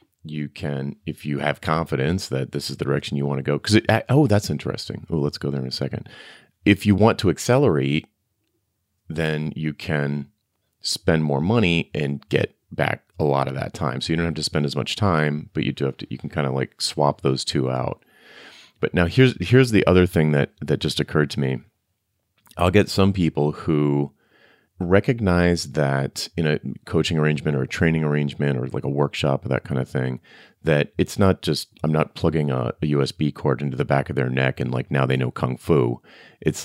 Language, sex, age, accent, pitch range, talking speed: English, male, 30-49, American, 70-90 Hz, 215 wpm